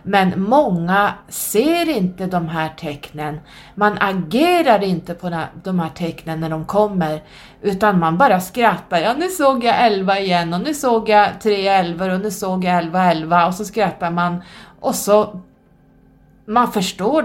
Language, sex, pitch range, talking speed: Swedish, female, 160-205 Hz, 160 wpm